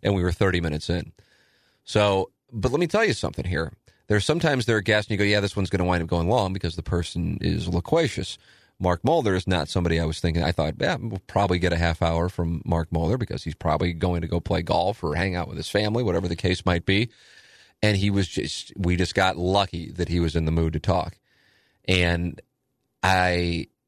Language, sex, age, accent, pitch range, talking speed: English, male, 30-49, American, 85-100 Hz, 235 wpm